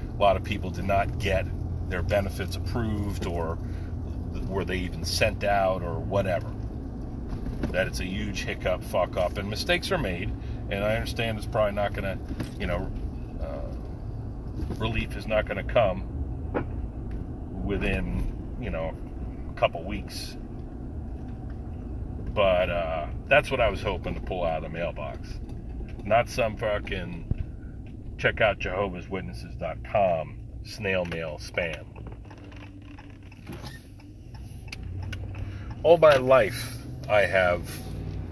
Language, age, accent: English, 40-59, American